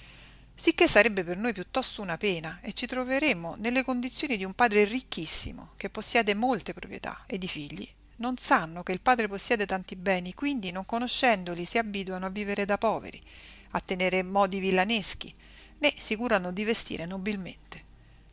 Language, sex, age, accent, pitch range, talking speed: Italian, female, 40-59, native, 180-230 Hz, 165 wpm